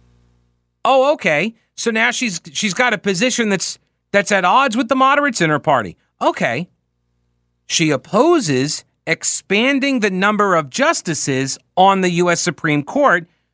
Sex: male